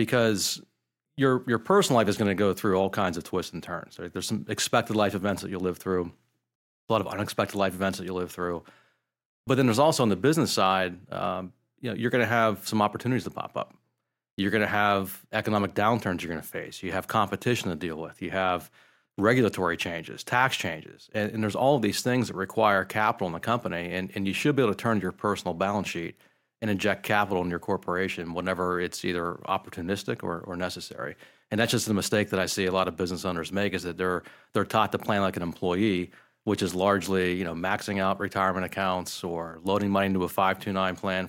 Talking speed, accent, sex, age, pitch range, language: 225 wpm, American, male, 40-59, 90-105 Hz, English